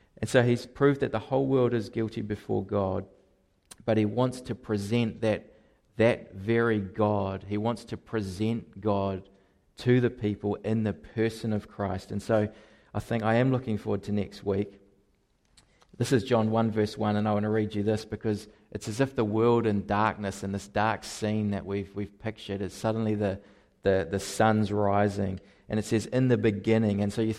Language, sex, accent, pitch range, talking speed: English, male, Australian, 100-115 Hz, 195 wpm